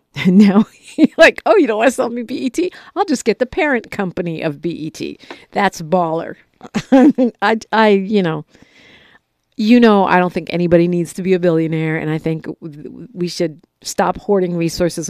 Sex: female